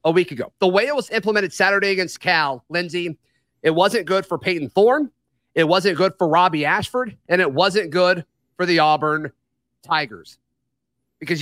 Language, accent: English, American